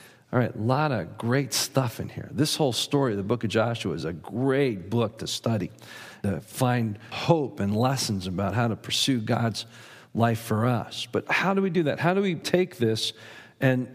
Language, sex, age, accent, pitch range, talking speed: English, male, 50-69, American, 115-145 Hz, 205 wpm